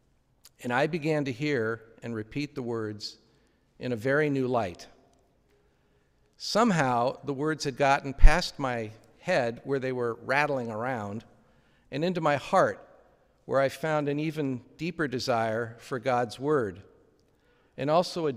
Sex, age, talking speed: male, 50-69, 145 wpm